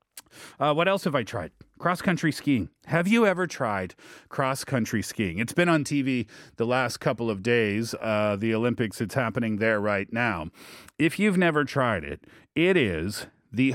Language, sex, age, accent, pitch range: Korean, male, 40-59, American, 115-170 Hz